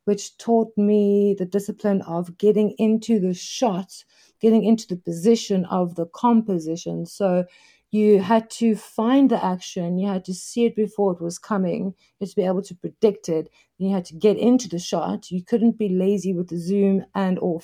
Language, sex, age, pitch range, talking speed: English, female, 50-69, 190-220 Hz, 195 wpm